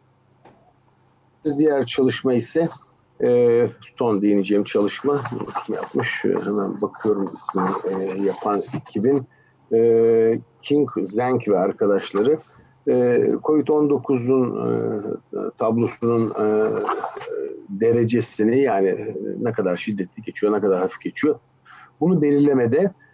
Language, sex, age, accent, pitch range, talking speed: Turkish, male, 50-69, native, 110-145 Hz, 100 wpm